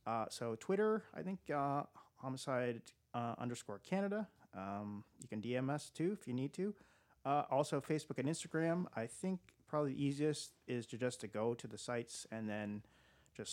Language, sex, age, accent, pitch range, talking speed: English, male, 40-59, American, 120-155 Hz, 180 wpm